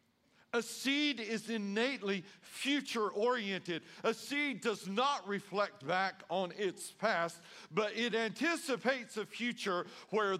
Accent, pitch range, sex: American, 170-215 Hz, male